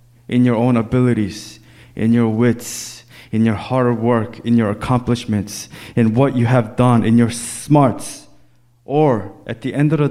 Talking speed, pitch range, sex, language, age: 165 wpm, 115-125 Hz, male, English, 20-39